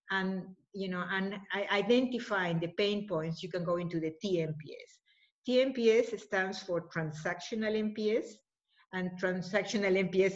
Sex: female